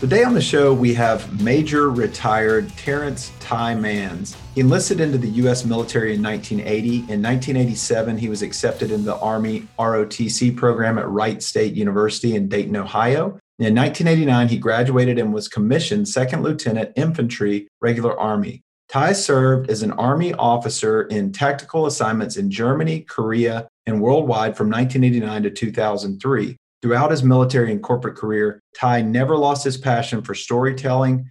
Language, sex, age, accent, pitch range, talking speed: English, male, 40-59, American, 110-140 Hz, 150 wpm